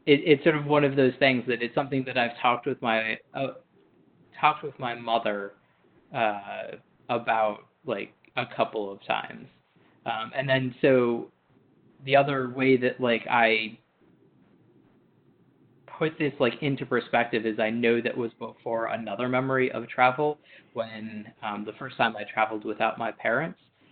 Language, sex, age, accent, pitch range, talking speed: English, male, 20-39, American, 110-125 Hz, 160 wpm